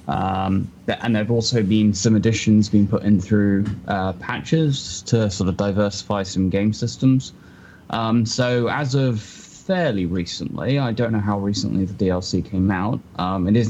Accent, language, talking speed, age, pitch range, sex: British, English, 170 wpm, 10-29, 95-120 Hz, male